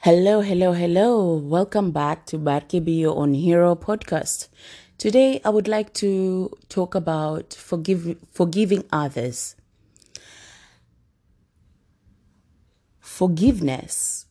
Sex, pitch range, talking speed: female, 145-190 Hz, 90 wpm